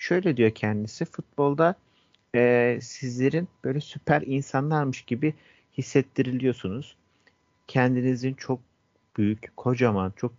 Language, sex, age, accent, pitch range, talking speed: Turkish, male, 50-69, native, 110-135 Hz, 90 wpm